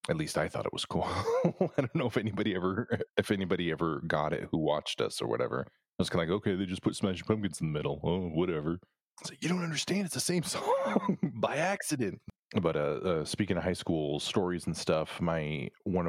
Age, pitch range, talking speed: 30-49, 75-90 Hz, 235 wpm